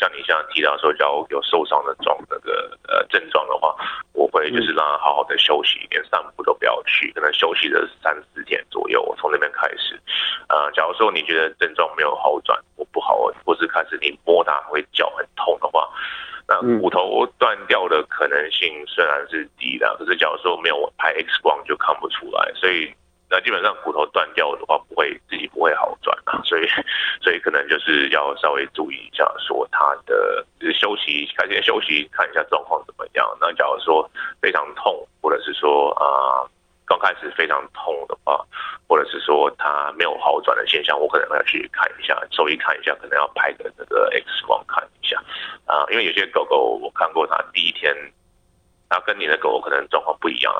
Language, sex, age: Chinese, male, 20-39